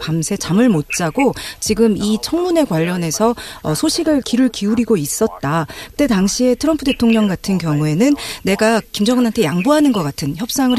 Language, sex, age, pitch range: Korean, female, 40-59, 170-250 Hz